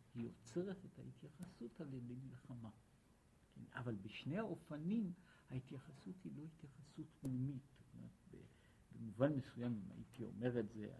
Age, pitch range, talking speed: 60-79, 115-165 Hz, 115 wpm